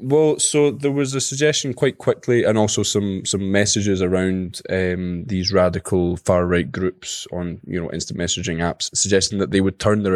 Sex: male